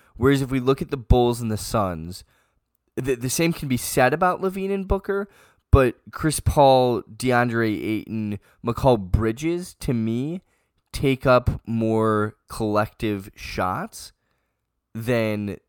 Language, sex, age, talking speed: English, male, 10-29, 135 wpm